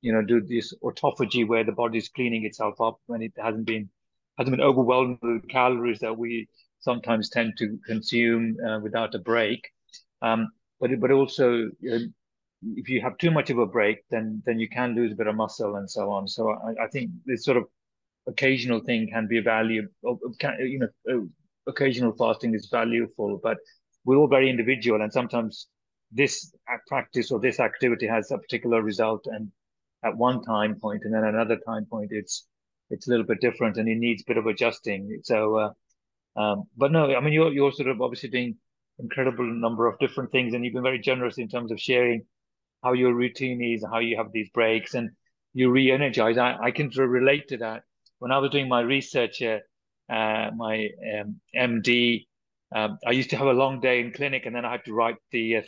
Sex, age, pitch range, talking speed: male, 30-49, 110-125 Hz, 200 wpm